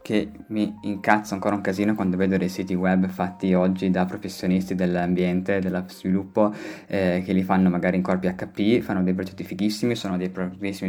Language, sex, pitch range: Italian, male, 95-105 Hz